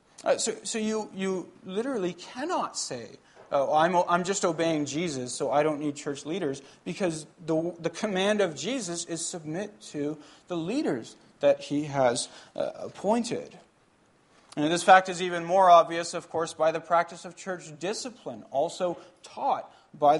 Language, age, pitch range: English, 40-59, 160-210 Hz